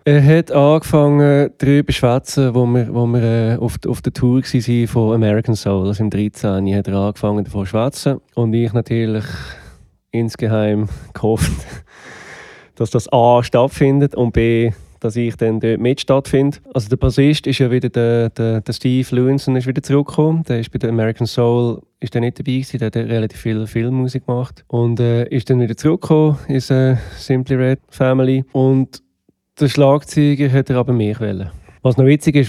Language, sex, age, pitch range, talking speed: German, male, 20-39, 115-130 Hz, 185 wpm